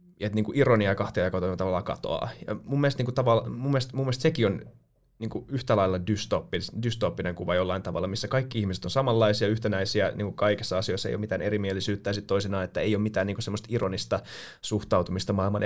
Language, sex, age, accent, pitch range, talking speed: Finnish, male, 20-39, native, 95-120 Hz, 190 wpm